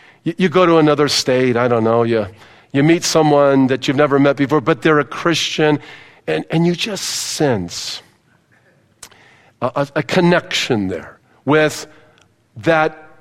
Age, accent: 50-69, American